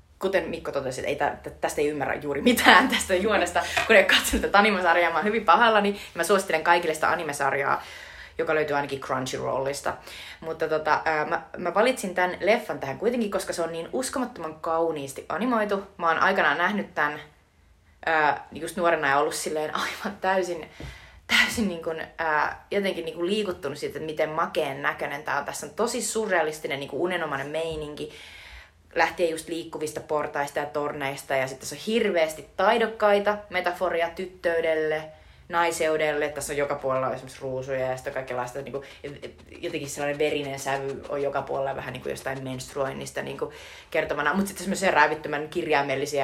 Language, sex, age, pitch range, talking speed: Finnish, female, 20-39, 140-185 Hz, 155 wpm